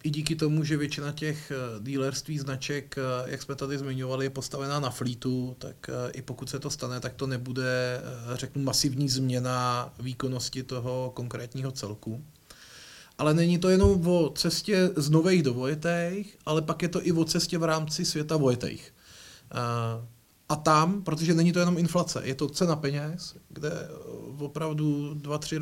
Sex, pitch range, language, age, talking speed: male, 130-160 Hz, Czech, 30-49, 155 wpm